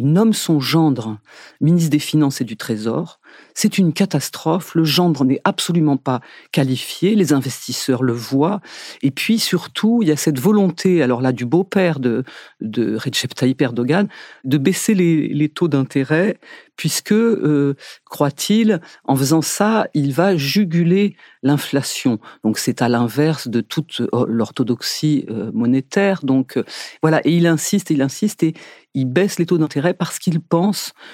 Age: 40-59